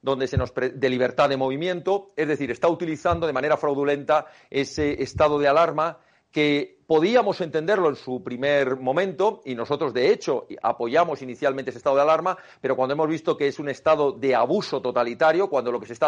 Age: 40-59